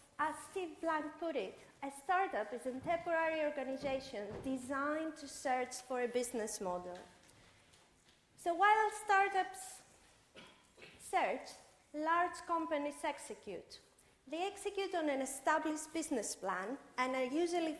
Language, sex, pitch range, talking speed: English, female, 250-345 Hz, 120 wpm